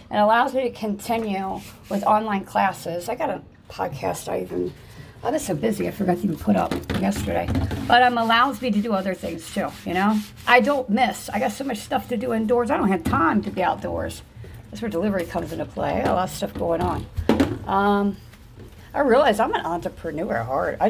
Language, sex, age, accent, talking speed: English, female, 50-69, American, 225 wpm